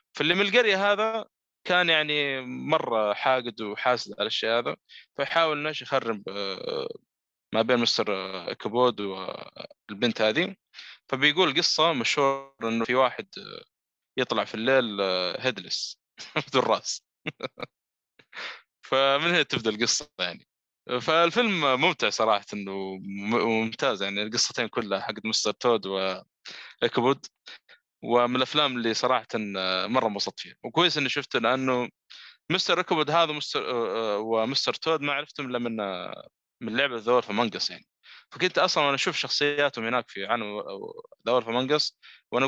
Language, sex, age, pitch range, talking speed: Arabic, male, 20-39, 110-150 Hz, 120 wpm